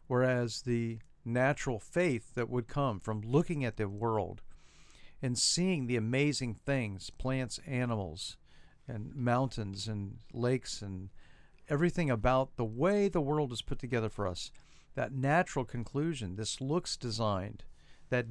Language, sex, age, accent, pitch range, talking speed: English, male, 50-69, American, 110-135 Hz, 140 wpm